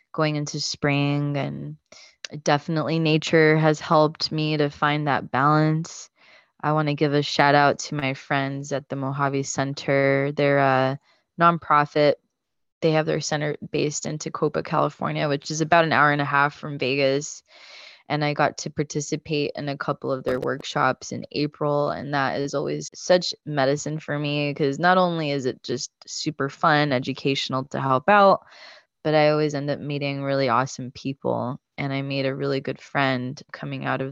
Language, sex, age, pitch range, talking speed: English, female, 20-39, 135-155 Hz, 175 wpm